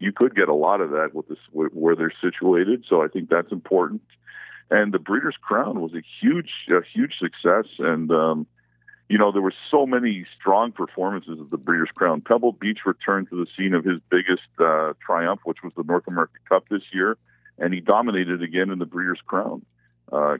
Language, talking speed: English, 205 wpm